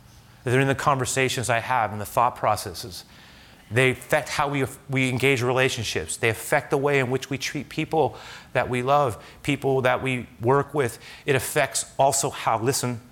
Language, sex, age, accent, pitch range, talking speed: English, male, 30-49, American, 110-145 Hz, 180 wpm